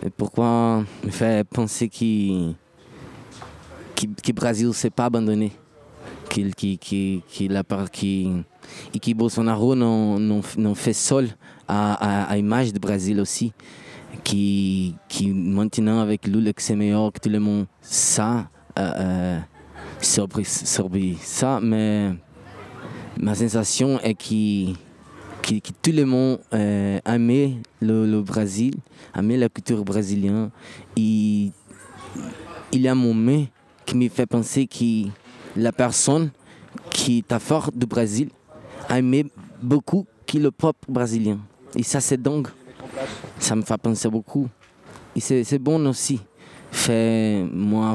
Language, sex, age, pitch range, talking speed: French, male, 20-39, 105-125 Hz, 130 wpm